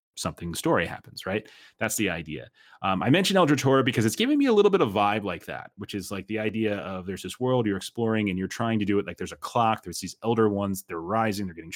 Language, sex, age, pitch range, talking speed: English, male, 30-49, 95-120 Hz, 265 wpm